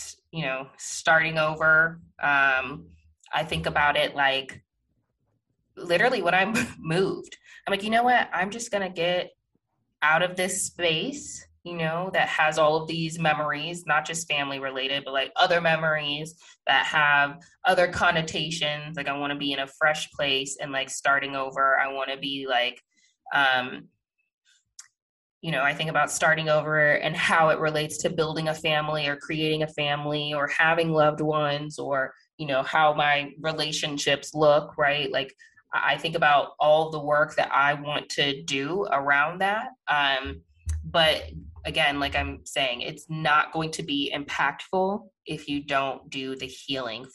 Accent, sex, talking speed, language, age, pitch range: American, female, 165 wpm, English, 20-39, 140-160 Hz